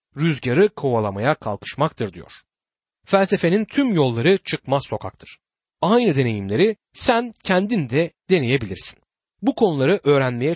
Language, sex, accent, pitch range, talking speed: Turkish, male, native, 120-185 Hz, 100 wpm